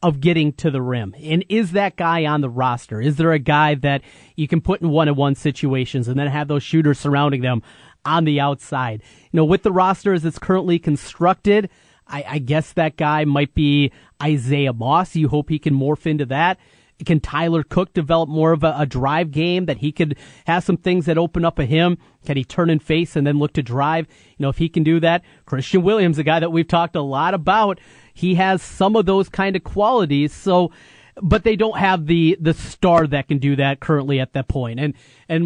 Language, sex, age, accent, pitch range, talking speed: English, male, 30-49, American, 145-170 Hz, 225 wpm